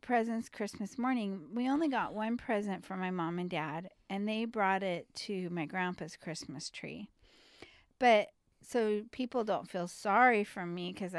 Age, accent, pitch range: 40-59, American, 180-250 Hz